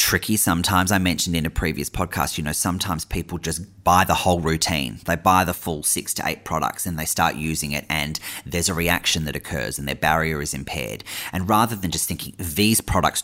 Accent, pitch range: Australian, 80-95 Hz